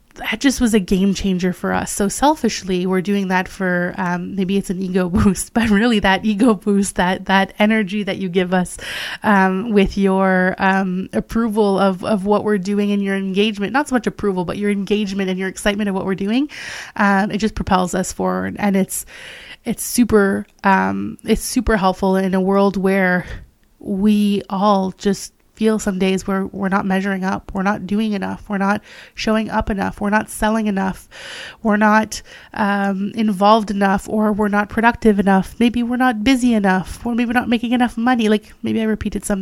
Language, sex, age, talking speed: English, female, 20-39, 190 wpm